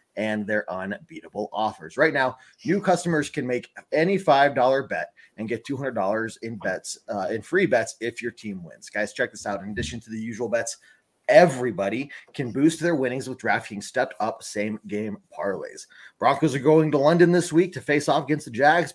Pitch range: 110-155 Hz